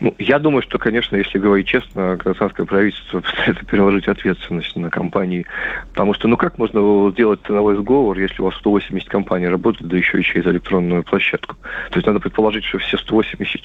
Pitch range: 95-110 Hz